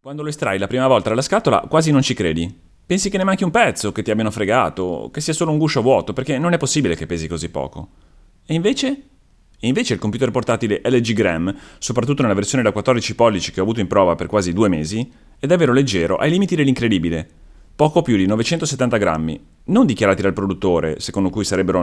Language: Italian